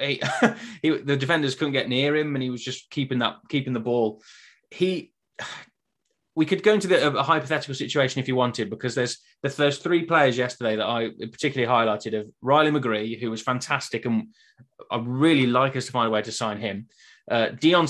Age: 20-39